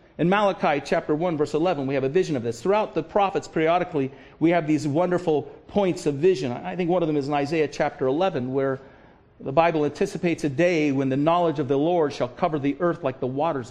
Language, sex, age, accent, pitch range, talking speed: English, male, 50-69, American, 140-185 Hz, 230 wpm